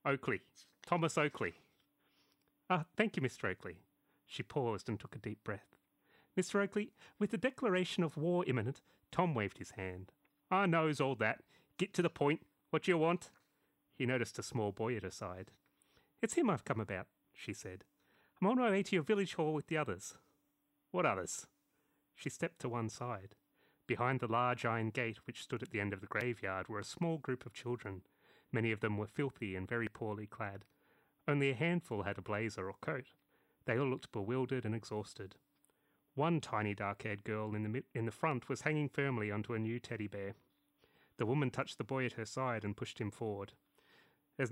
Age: 30-49